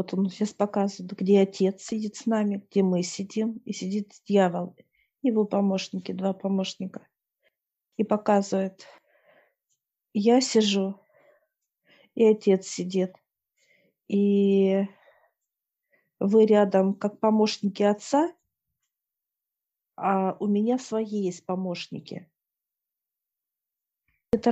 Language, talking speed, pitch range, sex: Russian, 95 wpm, 180-210 Hz, female